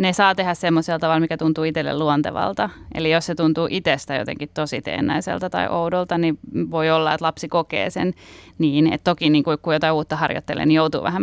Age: 30-49